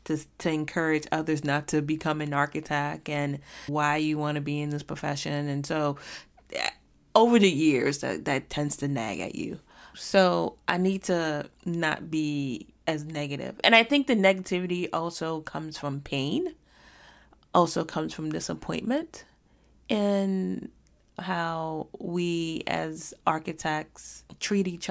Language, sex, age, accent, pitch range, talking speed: English, female, 30-49, American, 145-175 Hz, 140 wpm